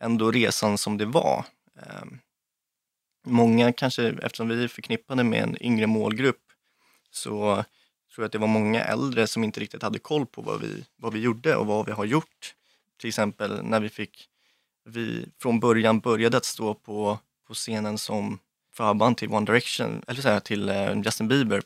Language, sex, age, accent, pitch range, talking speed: Swedish, male, 20-39, native, 105-120 Hz, 160 wpm